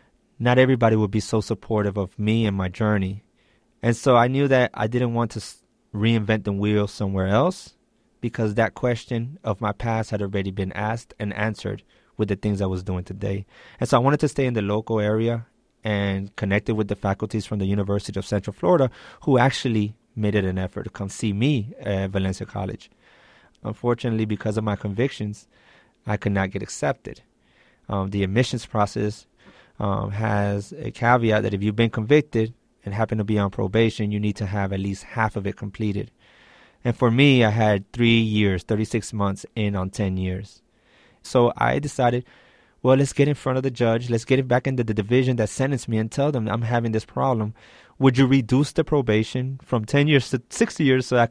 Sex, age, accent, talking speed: male, 30-49, American, 200 wpm